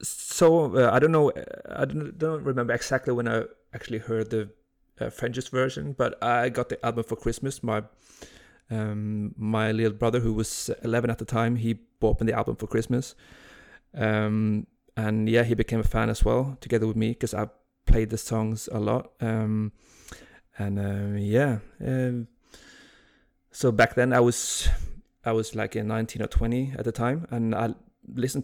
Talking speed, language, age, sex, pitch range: 180 wpm, English, 30-49, male, 110-120 Hz